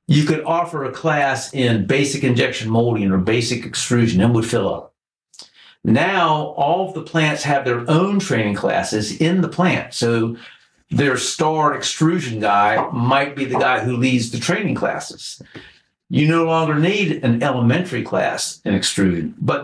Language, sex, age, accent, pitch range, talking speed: English, male, 50-69, American, 115-155 Hz, 160 wpm